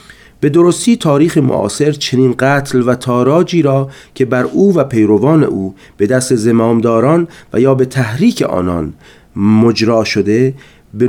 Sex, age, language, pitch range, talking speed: male, 30-49, Persian, 110-145 Hz, 140 wpm